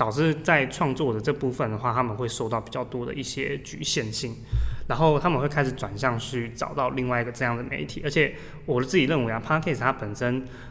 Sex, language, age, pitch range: male, Chinese, 20-39, 115-140 Hz